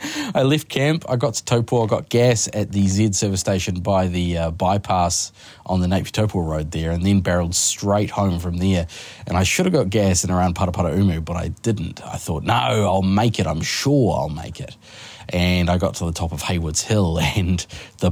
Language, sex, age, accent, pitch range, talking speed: English, male, 20-39, Australian, 90-115 Hz, 215 wpm